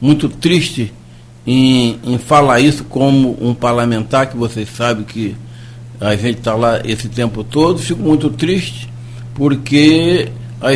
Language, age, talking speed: Portuguese, 60-79, 140 wpm